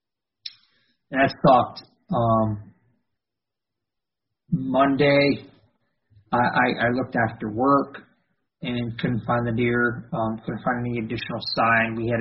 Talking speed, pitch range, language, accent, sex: 115 wpm, 115-140 Hz, English, American, male